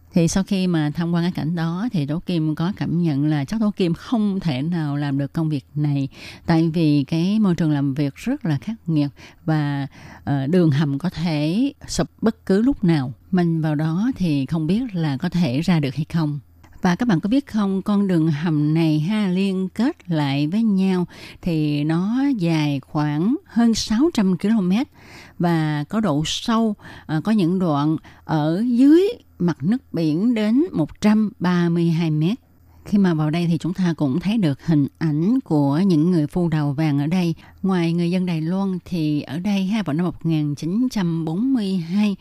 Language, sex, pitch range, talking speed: Vietnamese, female, 150-195 Hz, 190 wpm